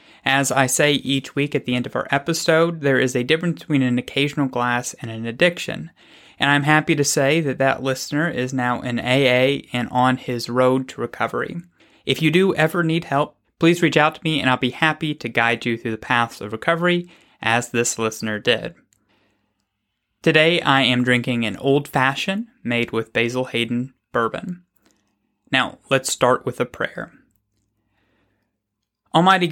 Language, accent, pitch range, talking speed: English, American, 120-155 Hz, 175 wpm